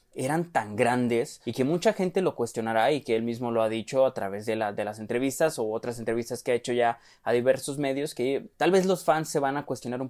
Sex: male